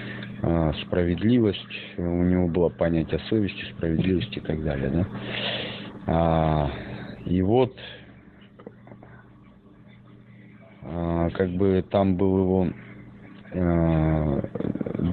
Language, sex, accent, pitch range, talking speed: Russian, male, native, 85-105 Hz, 85 wpm